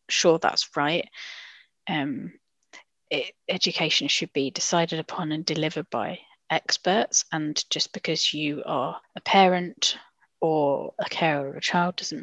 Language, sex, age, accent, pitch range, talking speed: English, female, 20-39, British, 150-175 Hz, 135 wpm